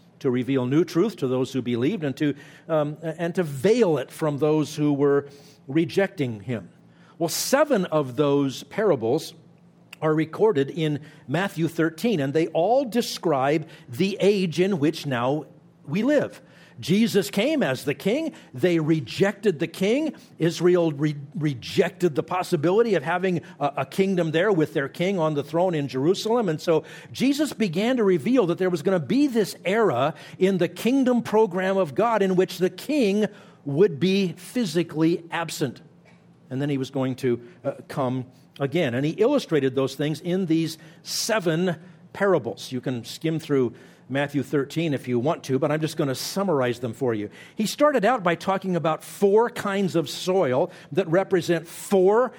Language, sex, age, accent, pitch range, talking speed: English, male, 50-69, American, 150-190 Hz, 170 wpm